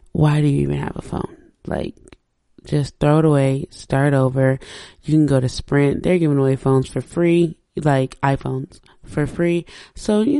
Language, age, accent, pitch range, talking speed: English, 20-39, American, 135-165 Hz, 180 wpm